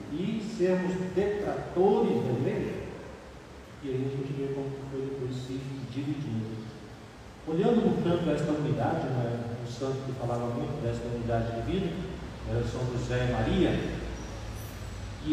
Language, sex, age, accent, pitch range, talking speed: Portuguese, male, 40-59, Brazilian, 130-190 Hz, 140 wpm